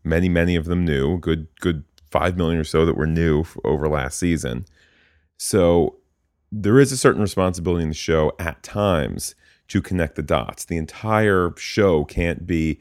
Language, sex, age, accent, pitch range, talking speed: English, male, 30-49, American, 80-95 Hz, 175 wpm